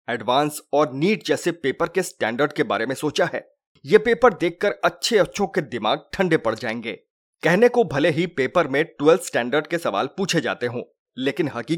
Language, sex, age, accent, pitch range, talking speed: Hindi, male, 30-49, native, 150-205 Hz, 85 wpm